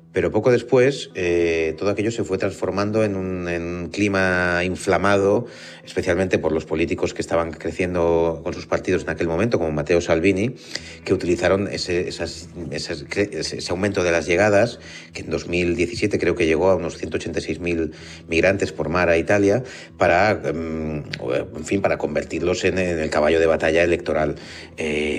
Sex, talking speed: male, 150 wpm